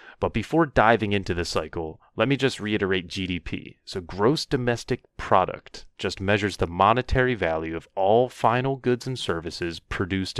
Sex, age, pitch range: male, 30-49, 85-110 Hz